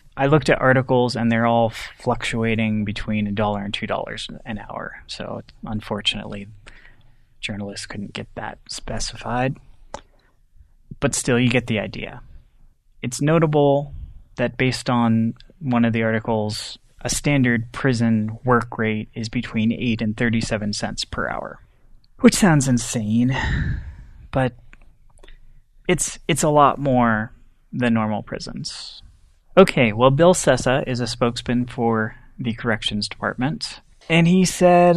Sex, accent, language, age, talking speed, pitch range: male, American, English, 20-39, 130 wpm, 110-140 Hz